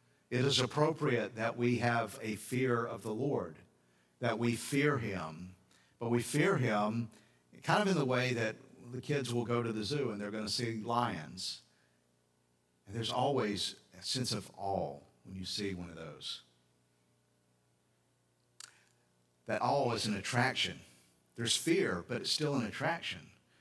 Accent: American